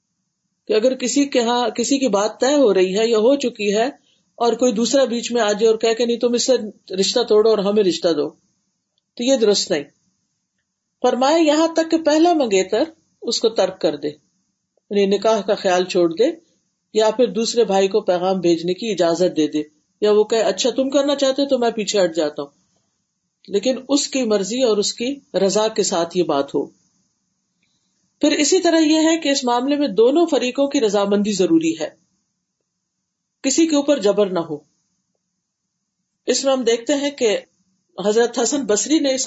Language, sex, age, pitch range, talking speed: Urdu, female, 50-69, 195-275 Hz, 195 wpm